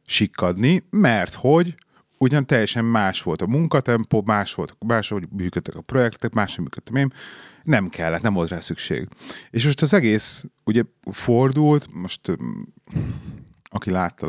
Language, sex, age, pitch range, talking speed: Hungarian, male, 30-49, 100-130 Hz, 145 wpm